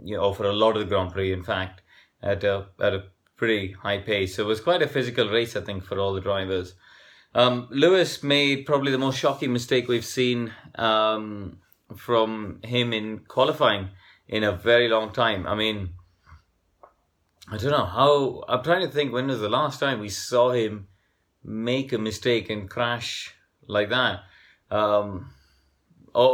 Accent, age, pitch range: Indian, 30-49, 105-125 Hz